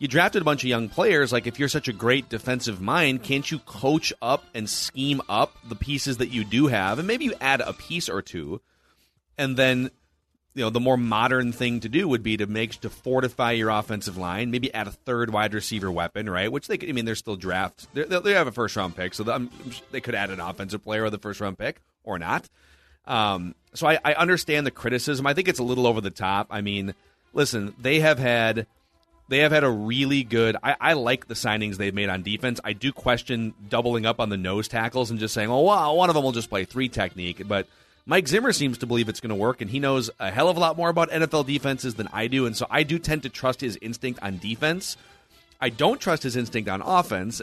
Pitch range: 105-135 Hz